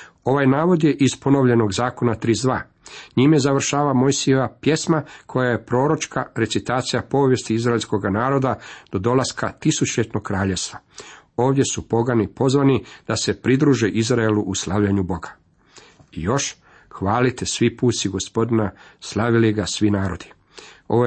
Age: 50-69